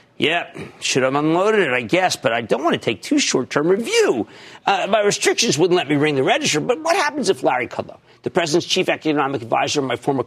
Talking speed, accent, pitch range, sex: 230 wpm, American, 140-220 Hz, male